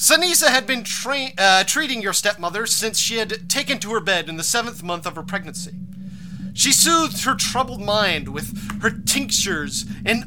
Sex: male